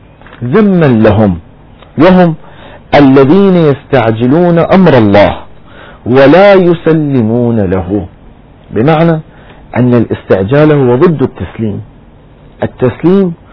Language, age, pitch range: Arabic, 40-59, 110-155 Hz